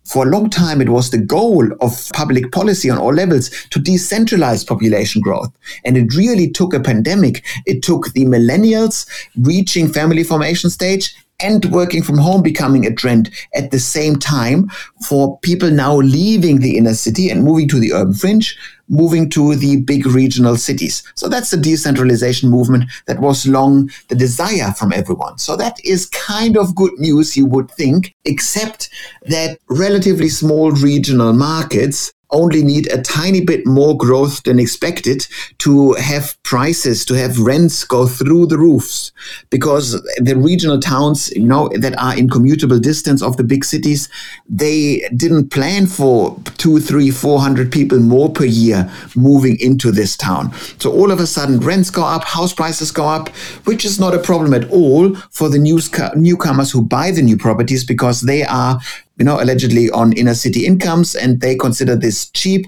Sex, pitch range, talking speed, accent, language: male, 125-165 Hz, 175 wpm, German, English